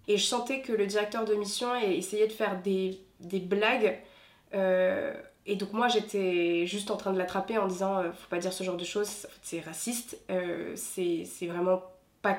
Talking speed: 215 wpm